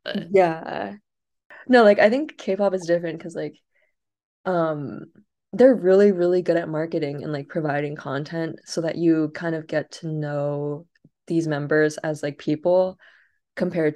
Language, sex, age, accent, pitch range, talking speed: English, female, 20-39, American, 150-175 Hz, 150 wpm